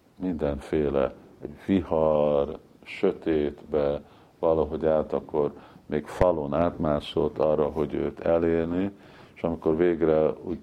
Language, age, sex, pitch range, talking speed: Hungarian, 50-69, male, 75-90 Hz, 95 wpm